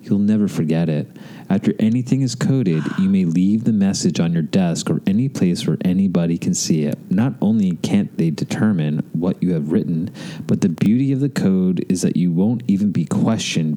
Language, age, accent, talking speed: English, 30-49, American, 200 wpm